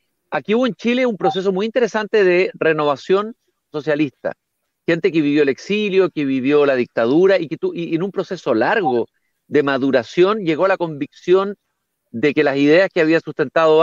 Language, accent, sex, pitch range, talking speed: Spanish, Mexican, male, 175-235 Hz, 180 wpm